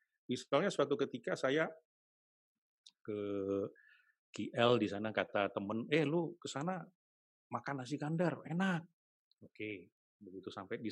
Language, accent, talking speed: English, Indonesian, 120 wpm